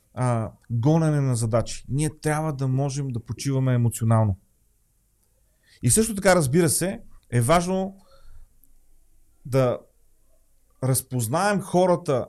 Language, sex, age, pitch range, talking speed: Bulgarian, male, 30-49, 120-165 Hz, 100 wpm